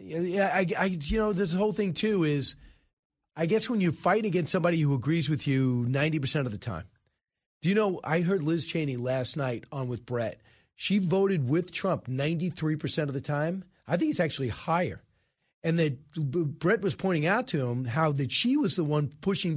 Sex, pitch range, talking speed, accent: male, 130-170 Hz, 205 wpm, American